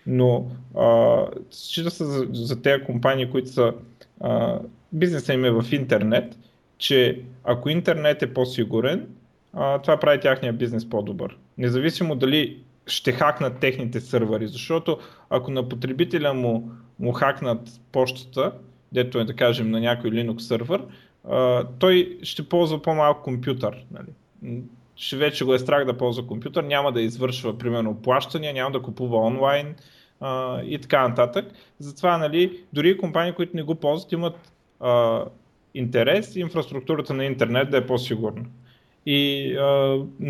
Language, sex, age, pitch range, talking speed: Bulgarian, male, 30-49, 125-155 Hz, 145 wpm